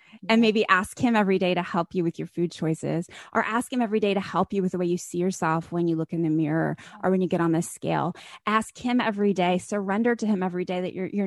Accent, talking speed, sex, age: American, 270 wpm, female, 20-39